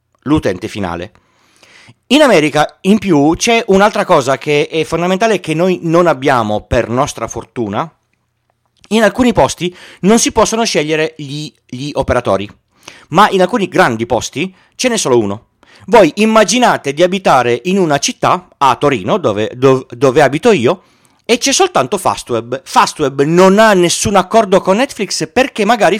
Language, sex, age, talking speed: Italian, male, 40-59, 150 wpm